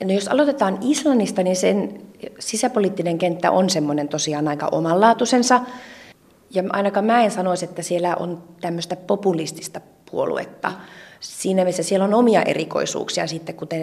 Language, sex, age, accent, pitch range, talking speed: Finnish, female, 30-49, native, 165-210 Hz, 140 wpm